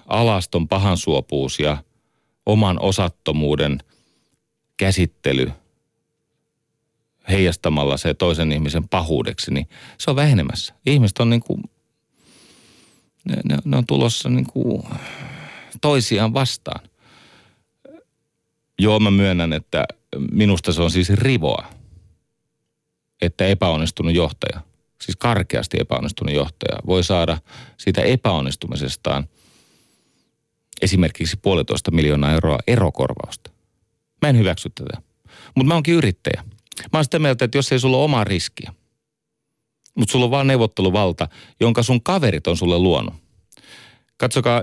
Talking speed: 110 wpm